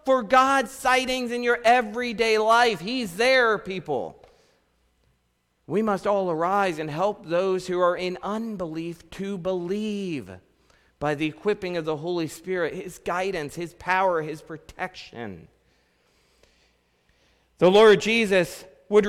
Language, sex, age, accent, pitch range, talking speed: English, male, 40-59, American, 155-230 Hz, 125 wpm